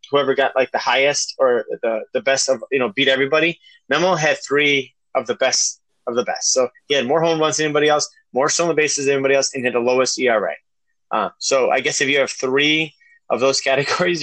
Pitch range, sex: 135-175 Hz, male